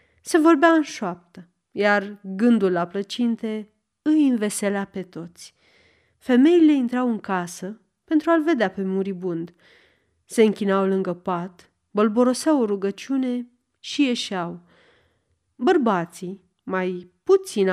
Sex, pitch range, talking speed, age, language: female, 185-250 Hz, 110 wpm, 30-49, Romanian